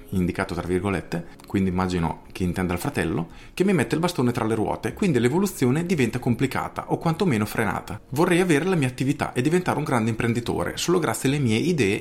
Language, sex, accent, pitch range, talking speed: Italian, male, native, 100-135 Hz, 195 wpm